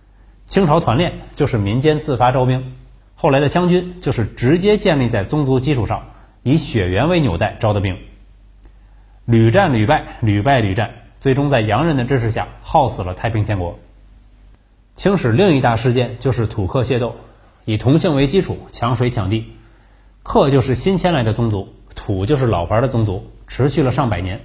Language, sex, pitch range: Chinese, male, 105-145 Hz